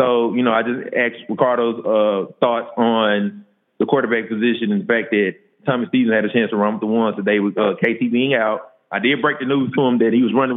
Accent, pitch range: American, 105-125 Hz